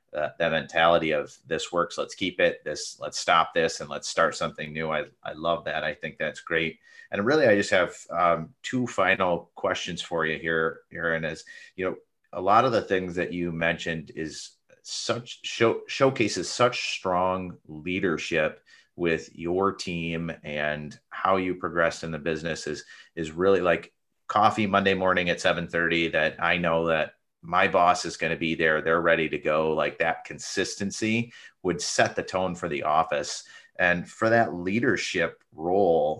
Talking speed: 175 wpm